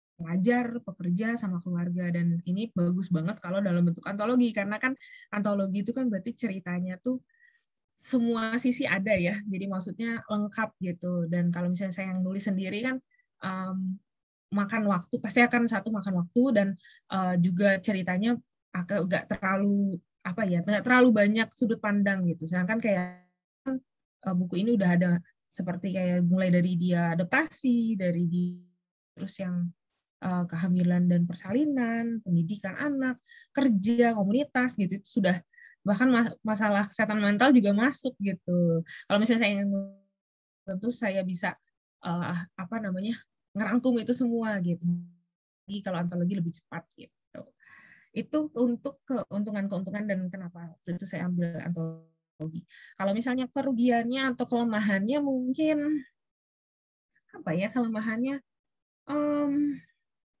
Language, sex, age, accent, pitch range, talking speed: Indonesian, female, 20-39, native, 180-235 Hz, 130 wpm